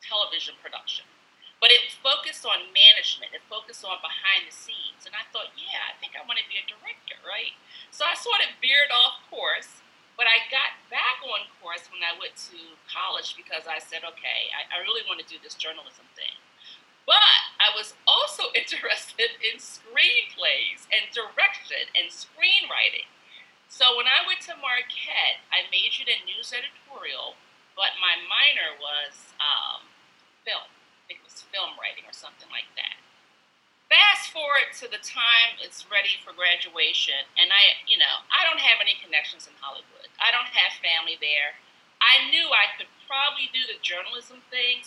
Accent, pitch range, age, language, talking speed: American, 185-275 Hz, 40-59, English, 170 wpm